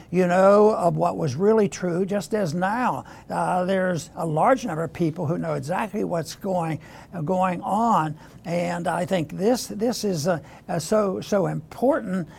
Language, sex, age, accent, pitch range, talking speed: English, male, 60-79, American, 175-215 Hz, 165 wpm